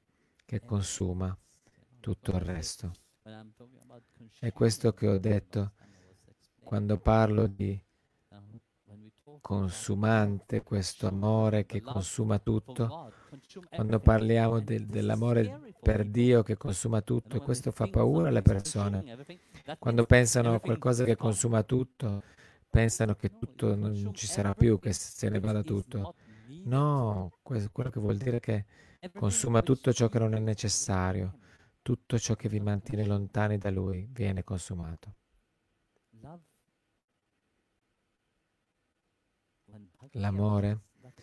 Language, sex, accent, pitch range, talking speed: Italian, male, native, 100-120 Hz, 110 wpm